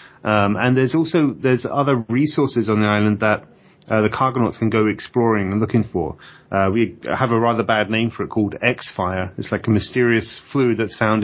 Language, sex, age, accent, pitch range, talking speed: English, male, 30-49, British, 105-130 Hz, 210 wpm